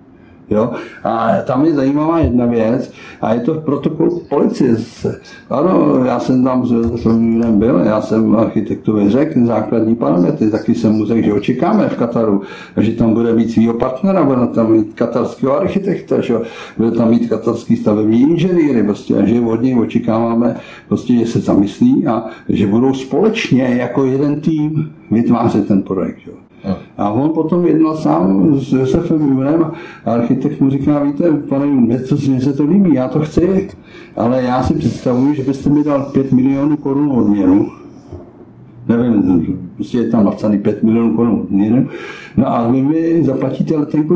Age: 60-79